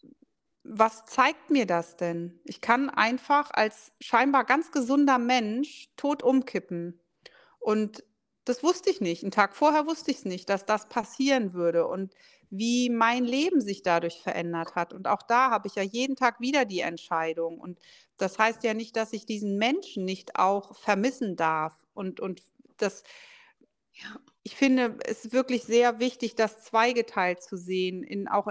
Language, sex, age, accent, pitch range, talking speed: German, female, 40-59, German, 190-250 Hz, 160 wpm